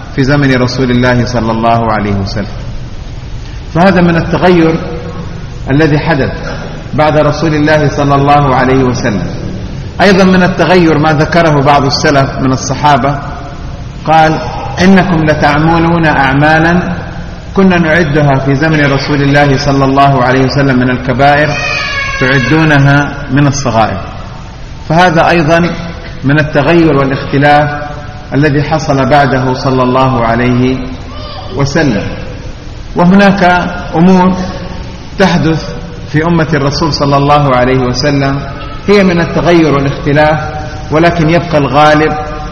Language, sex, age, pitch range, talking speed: Indonesian, male, 40-59, 130-160 Hz, 110 wpm